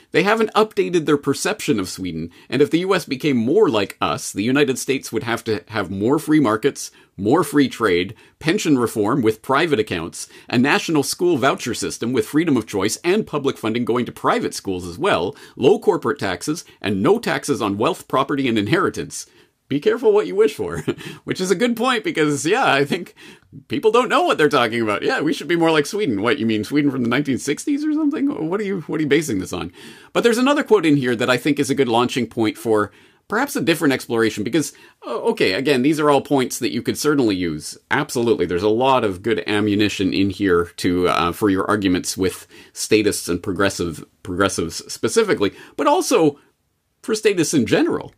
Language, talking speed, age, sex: English, 205 wpm, 40-59, male